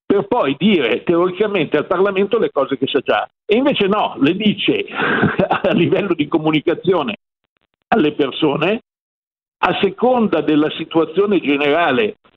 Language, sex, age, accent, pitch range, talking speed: Italian, male, 50-69, native, 145-225 Hz, 130 wpm